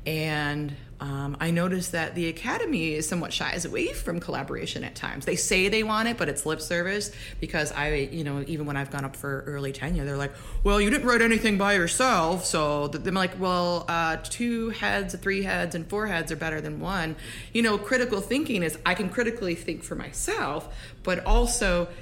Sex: female